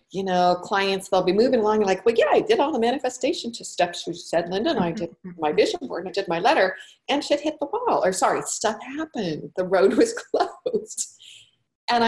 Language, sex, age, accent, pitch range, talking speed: English, female, 40-59, American, 180-245 Hz, 225 wpm